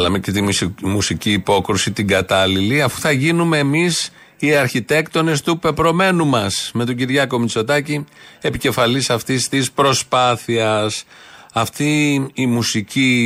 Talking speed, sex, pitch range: 120 wpm, male, 105-140 Hz